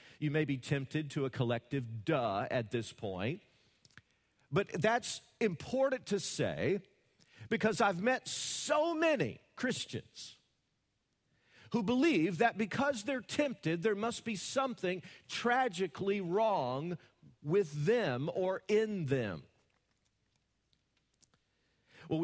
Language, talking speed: English, 110 wpm